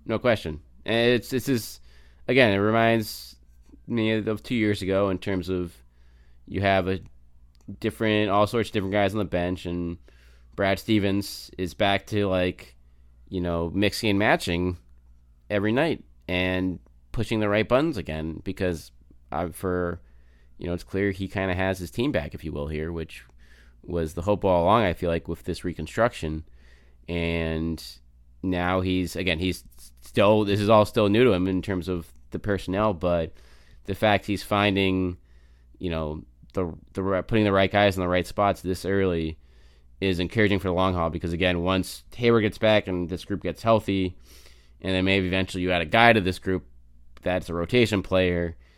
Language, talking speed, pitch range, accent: English, 180 wpm, 75-100 Hz, American